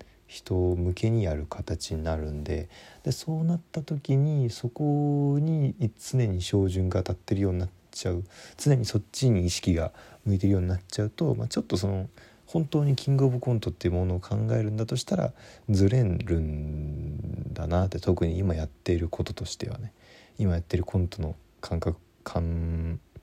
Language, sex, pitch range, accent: Japanese, male, 85-115 Hz, native